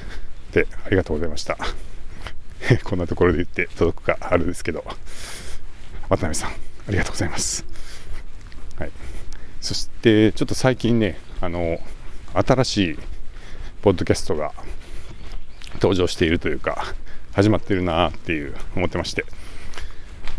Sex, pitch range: male, 80-100 Hz